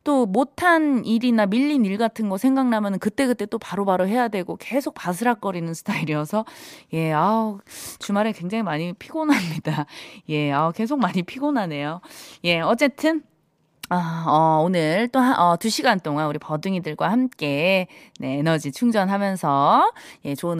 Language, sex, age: Korean, female, 20-39